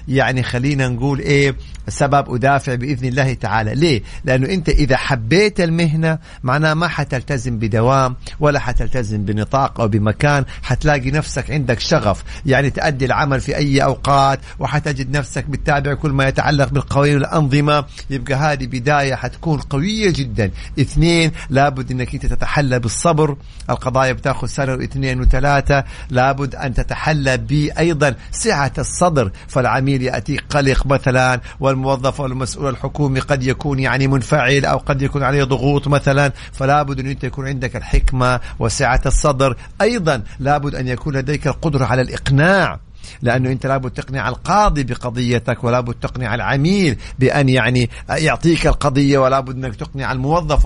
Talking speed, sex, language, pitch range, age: 135 wpm, male, English, 125-145 Hz, 50-69